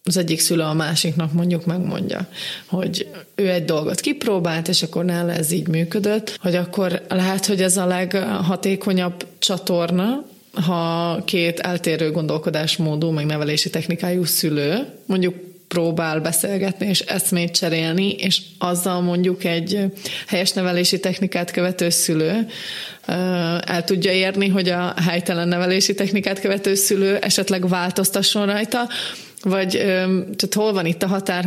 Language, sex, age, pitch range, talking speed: Hungarian, female, 30-49, 170-190 Hz, 130 wpm